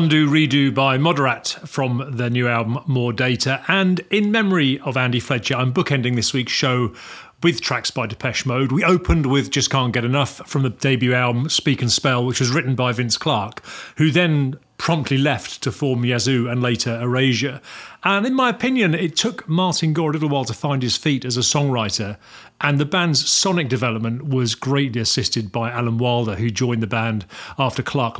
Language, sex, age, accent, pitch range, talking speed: English, male, 40-59, British, 120-155 Hz, 195 wpm